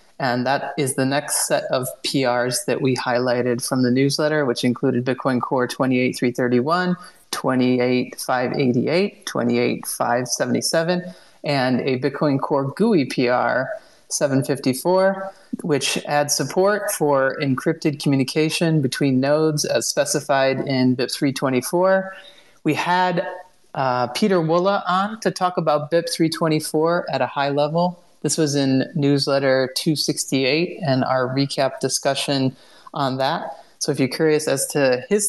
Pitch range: 130-165 Hz